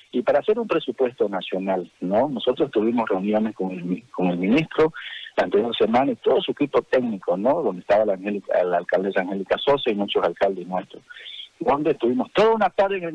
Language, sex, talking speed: Spanish, male, 190 wpm